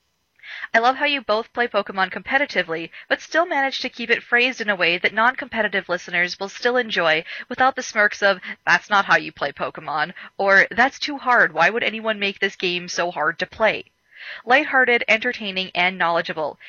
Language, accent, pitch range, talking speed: English, American, 185-245 Hz, 185 wpm